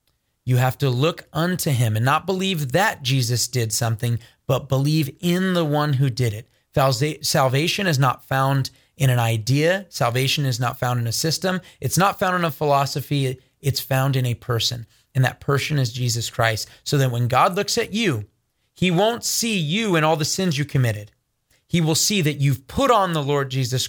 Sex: male